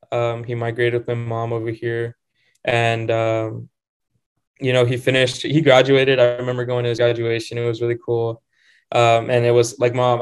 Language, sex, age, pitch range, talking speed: English, male, 10-29, 115-125 Hz, 190 wpm